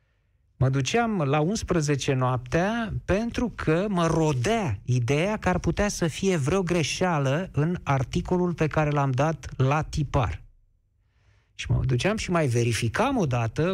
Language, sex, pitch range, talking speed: Romanian, male, 115-165 Hz, 140 wpm